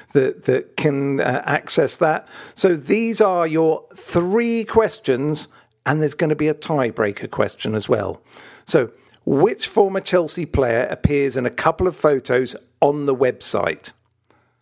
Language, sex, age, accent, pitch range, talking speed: English, male, 50-69, British, 130-190 Hz, 150 wpm